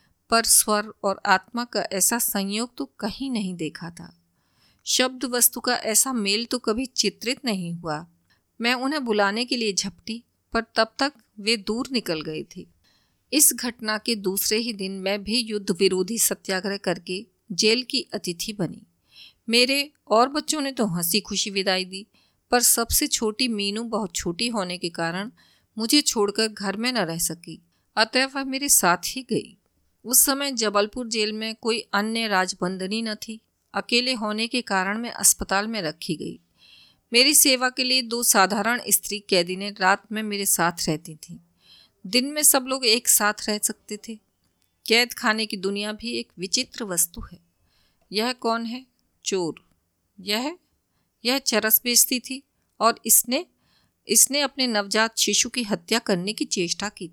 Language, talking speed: Hindi, 165 wpm